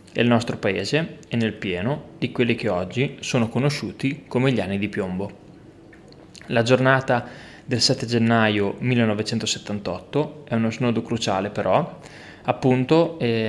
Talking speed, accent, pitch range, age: 135 wpm, native, 105-130 Hz, 20-39